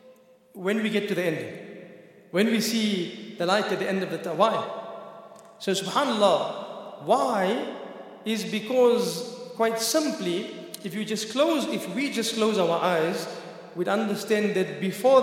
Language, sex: English, male